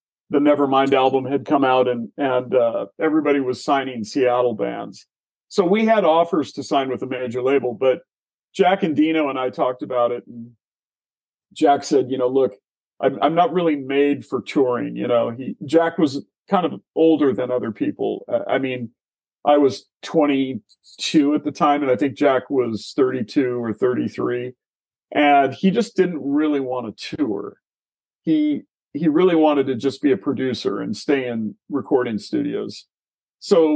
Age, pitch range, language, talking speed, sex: 40-59, 120-150 Hz, English, 170 wpm, male